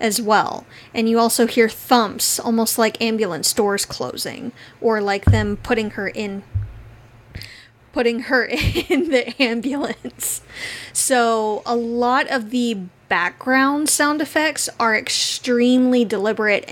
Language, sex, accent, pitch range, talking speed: English, female, American, 210-255 Hz, 120 wpm